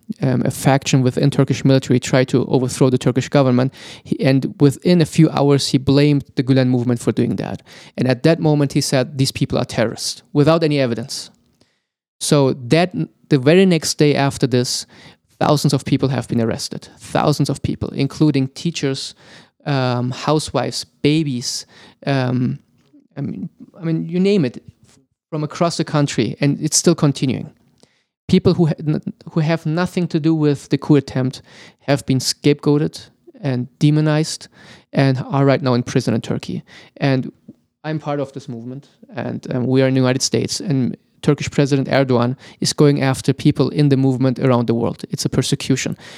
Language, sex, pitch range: English, male, 130-155 Hz